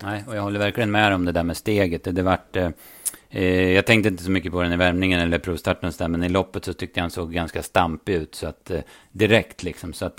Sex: male